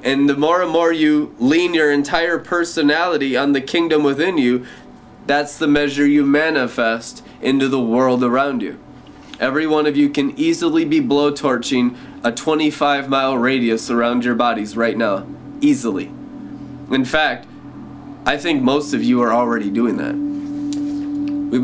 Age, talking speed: 20-39, 155 wpm